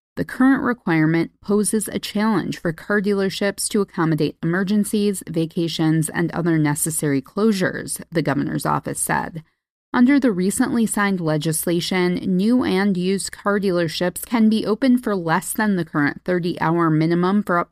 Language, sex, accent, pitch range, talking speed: English, female, American, 165-210 Hz, 145 wpm